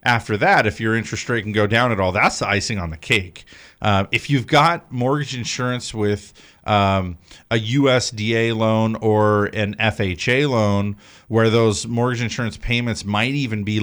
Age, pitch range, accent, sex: 40-59, 100-120 Hz, American, male